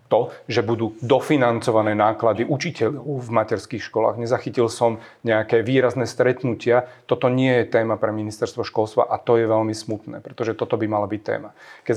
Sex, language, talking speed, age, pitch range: male, Slovak, 165 wpm, 30-49, 110-125 Hz